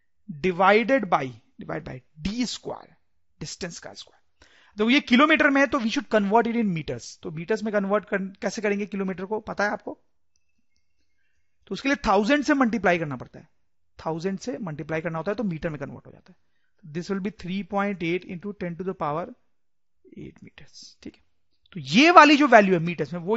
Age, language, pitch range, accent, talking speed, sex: 40-59, English, 160-240 Hz, Indian, 200 wpm, male